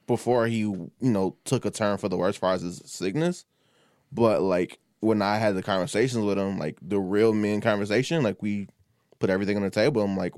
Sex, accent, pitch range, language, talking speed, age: male, American, 95-115 Hz, English, 215 wpm, 20-39